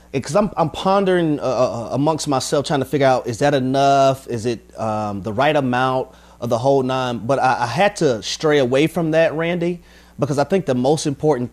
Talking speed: 210 wpm